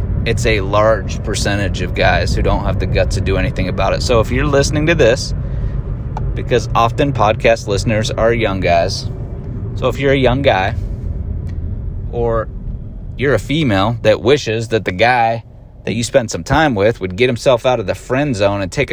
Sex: male